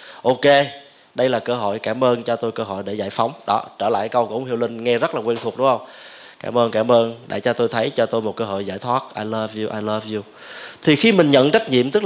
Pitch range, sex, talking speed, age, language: 120-165 Hz, male, 285 wpm, 20-39, English